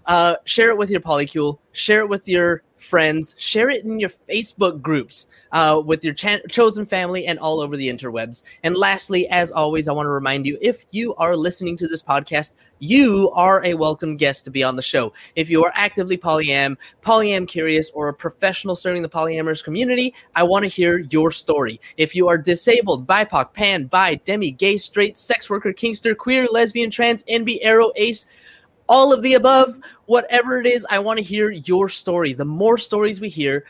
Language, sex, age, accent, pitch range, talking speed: English, male, 20-39, American, 150-215 Hz, 195 wpm